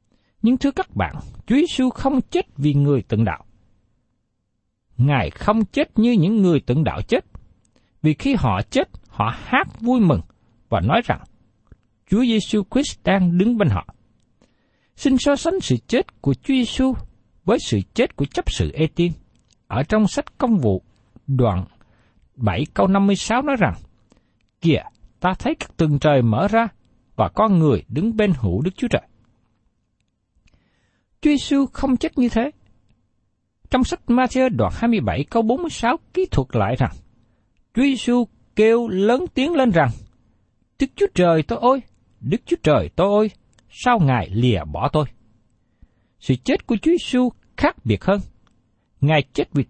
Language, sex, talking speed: Vietnamese, male, 155 wpm